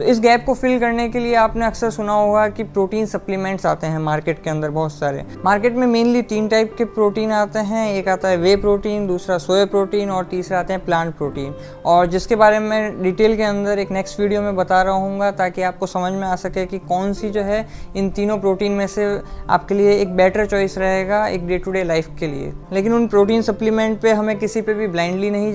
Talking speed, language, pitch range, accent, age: 235 wpm, Hindi, 190-220 Hz, native, 20-39